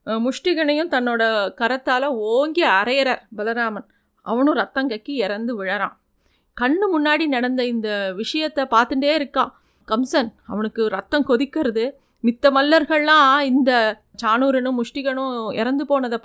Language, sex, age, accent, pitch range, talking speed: Tamil, female, 30-49, native, 235-300 Hz, 105 wpm